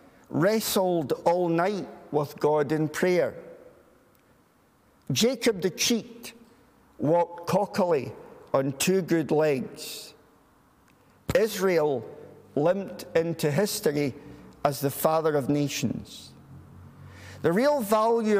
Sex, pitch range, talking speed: male, 150-200 Hz, 90 wpm